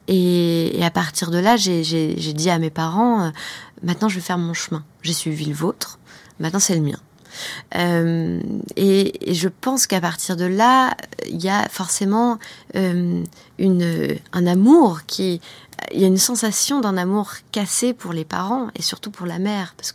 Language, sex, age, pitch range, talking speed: French, female, 20-39, 170-205 Hz, 190 wpm